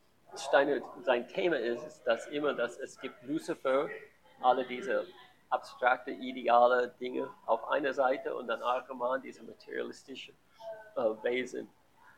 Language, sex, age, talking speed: German, male, 50-69, 130 wpm